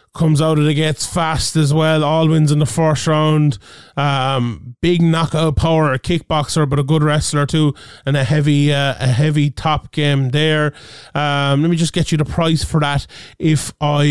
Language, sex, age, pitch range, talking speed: English, male, 20-39, 140-170 Hz, 195 wpm